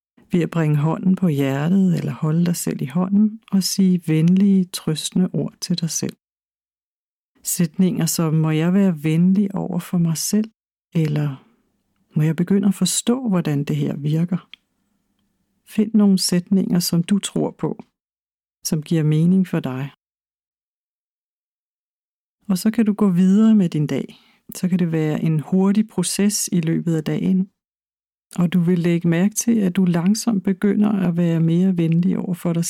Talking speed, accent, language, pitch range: 165 wpm, native, Danish, 165-205 Hz